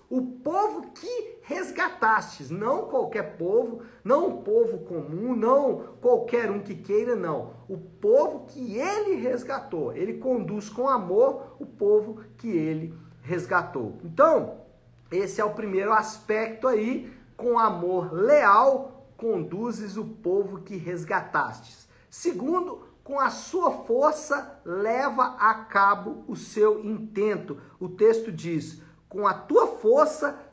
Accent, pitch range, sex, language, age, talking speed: Brazilian, 185-265 Hz, male, Portuguese, 50-69, 125 wpm